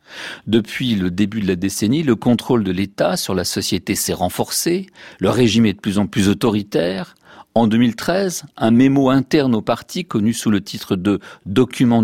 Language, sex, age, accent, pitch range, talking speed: French, male, 50-69, French, 100-140 Hz, 185 wpm